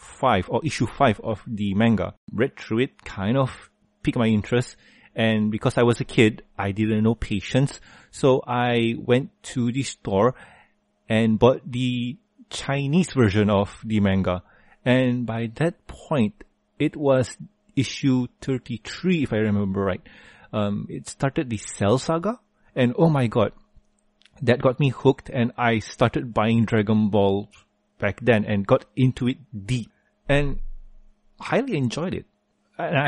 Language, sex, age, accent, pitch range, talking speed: English, male, 30-49, Malaysian, 105-130 Hz, 150 wpm